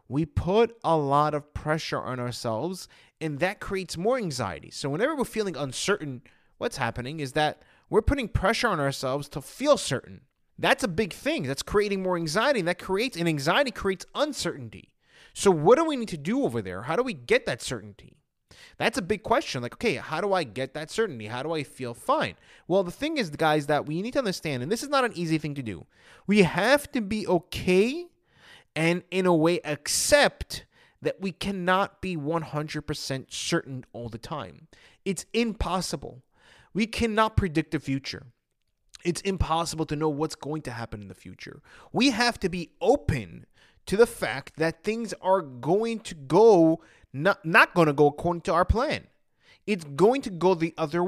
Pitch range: 145-205 Hz